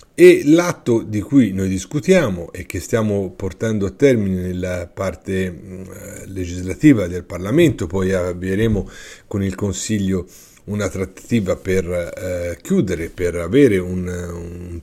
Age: 50-69